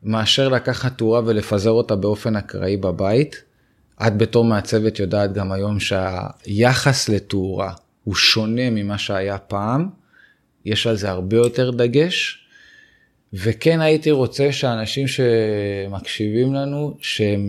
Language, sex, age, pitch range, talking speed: Hebrew, male, 20-39, 100-130 Hz, 115 wpm